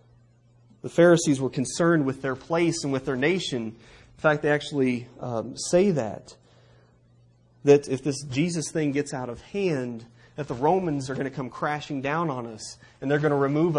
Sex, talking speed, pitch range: male, 185 wpm, 120-160 Hz